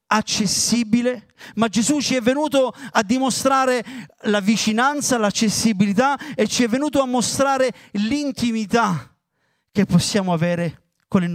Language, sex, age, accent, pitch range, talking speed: Italian, male, 40-59, native, 175-245 Hz, 120 wpm